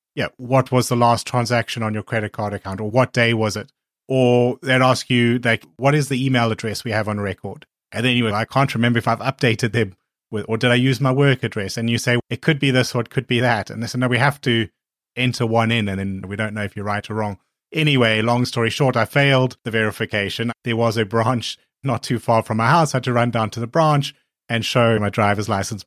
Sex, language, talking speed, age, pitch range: male, English, 260 wpm, 30-49, 105-125 Hz